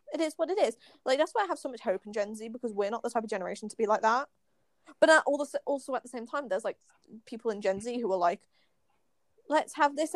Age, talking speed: 20-39, 270 wpm